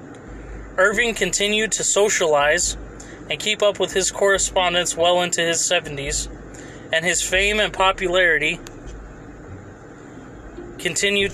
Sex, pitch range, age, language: male, 155-195 Hz, 20-39, English